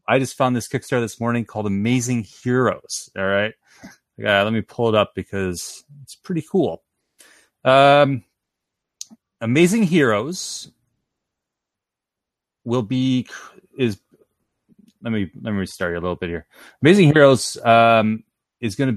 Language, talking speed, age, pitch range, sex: English, 135 wpm, 30-49, 100-130 Hz, male